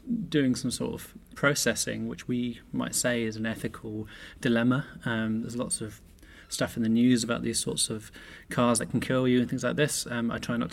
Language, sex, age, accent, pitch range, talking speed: English, male, 20-39, British, 115-135 Hz, 215 wpm